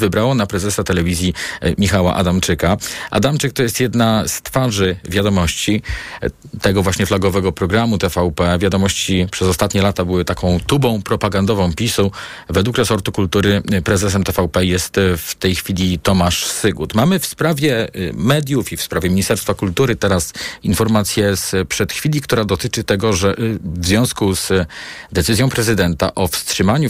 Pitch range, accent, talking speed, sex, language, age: 95-110 Hz, native, 140 wpm, male, Polish, 40-59